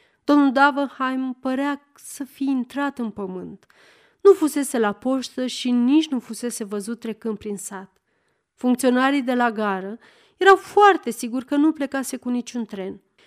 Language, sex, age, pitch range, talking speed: Romanian, female, 30-49, 210-295 Hz, 150 wpm